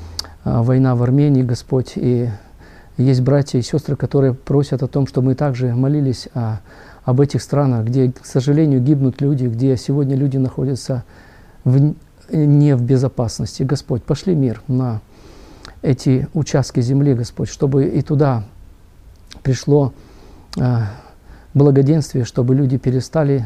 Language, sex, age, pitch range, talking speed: Russian, male, 50-69, 125-145 Hz, 125 wpm